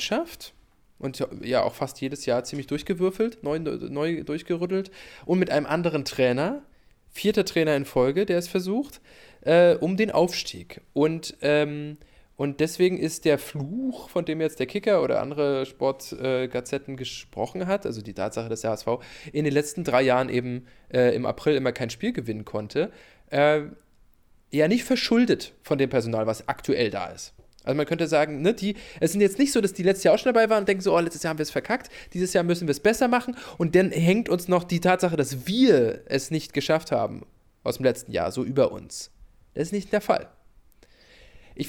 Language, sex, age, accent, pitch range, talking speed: English, male, 20-39, German, 135-190 Hz, 195 wpm